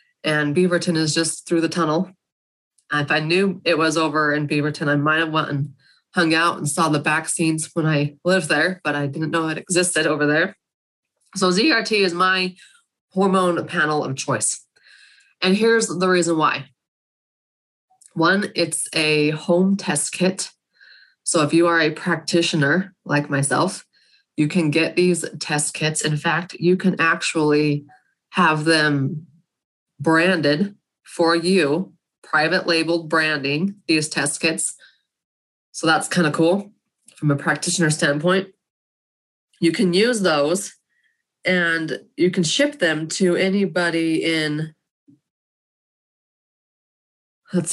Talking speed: 140 wpm